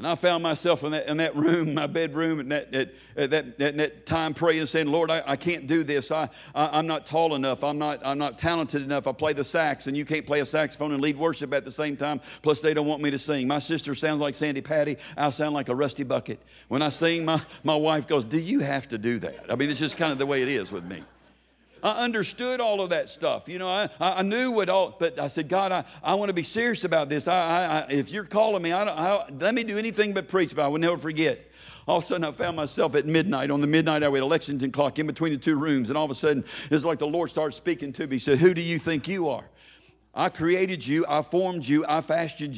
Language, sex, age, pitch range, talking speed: English, male, 60-79, 145-175 Hz, 280 wpm